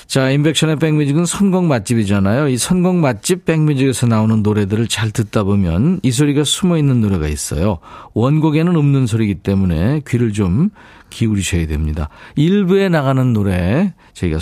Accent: native